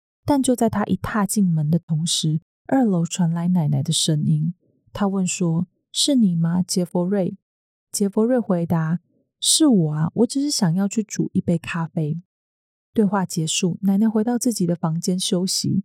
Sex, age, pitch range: female, 20-39, 175-220 Hz